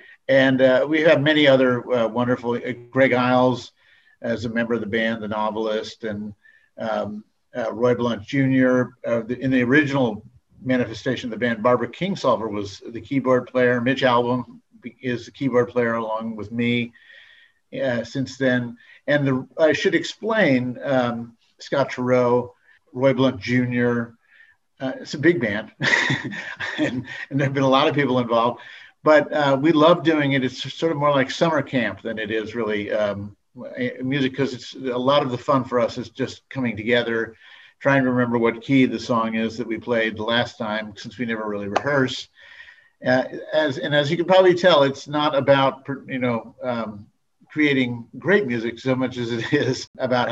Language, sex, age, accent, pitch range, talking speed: English, male, 50-69, American, 115-135 Hz, 175 wpm